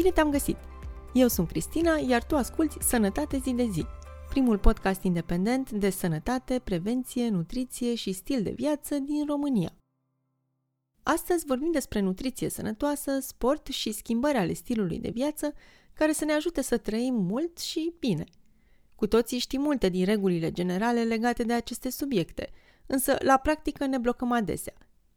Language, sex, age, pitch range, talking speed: Romanian, female, 30-49, 195-270 Hz, 155 wpm